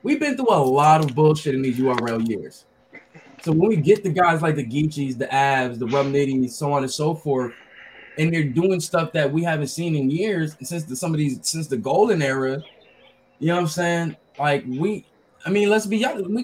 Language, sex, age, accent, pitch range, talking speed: English, male, 20-39, American, 155-235 Hz, 225 wpm